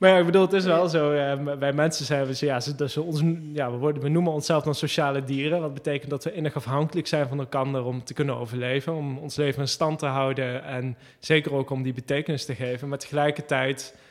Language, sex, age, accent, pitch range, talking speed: Dutch, male, 20-39, Dutch, 135-155 Hz, 245 wpm